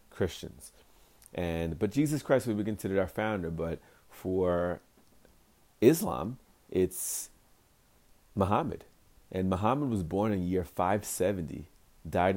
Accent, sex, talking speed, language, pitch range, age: American, male, 115 wpm, English, 85-105 Hz, 30-49